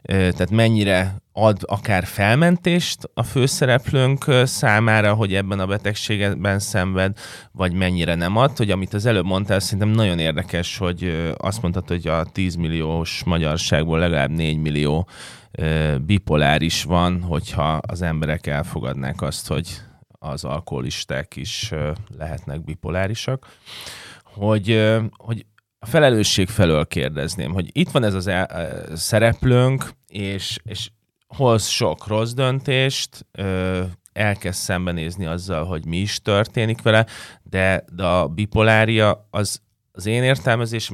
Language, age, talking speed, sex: Hungarian, 30-49, 125 wpm, male